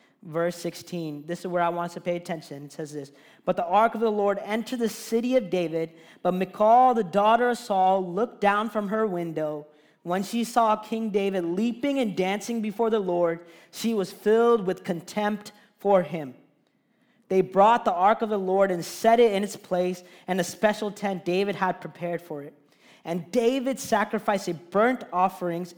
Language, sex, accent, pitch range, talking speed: English, male, American, 170-215 Hz, 190 wpm